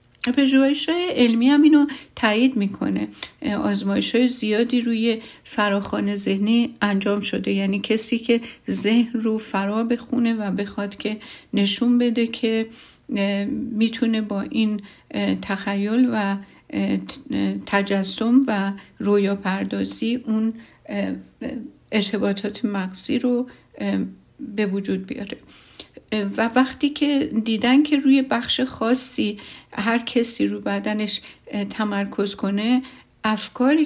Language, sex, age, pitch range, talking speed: Persian, female, 50-69, 200-245 Hz, 105 wpm